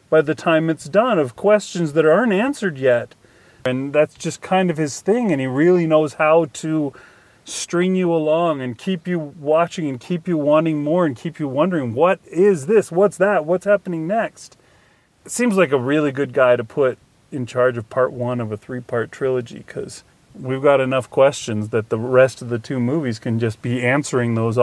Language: English